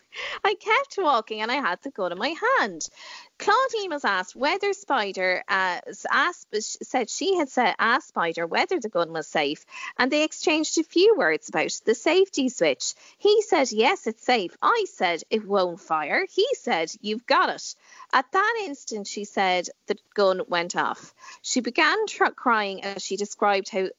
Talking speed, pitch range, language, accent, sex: 170 wpm, 185-310 Hz, English, Irish, female